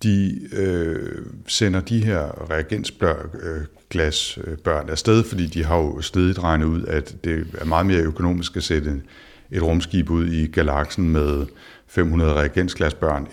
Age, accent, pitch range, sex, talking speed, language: 60-79, native, 75-90 Hz, male, 145 wpm, Danish